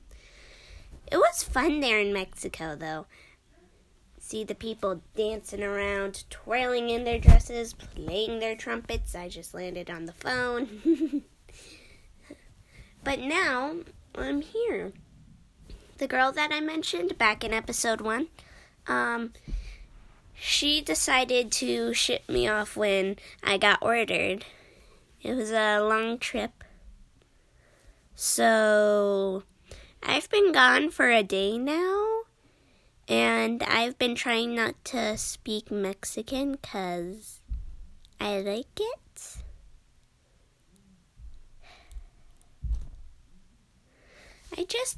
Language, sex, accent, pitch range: English, female, American, 200-260 Hz